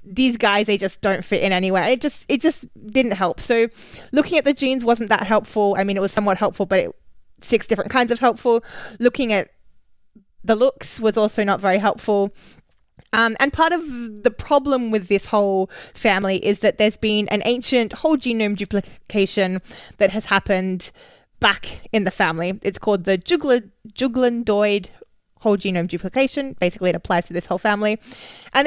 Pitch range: 195-240 Hz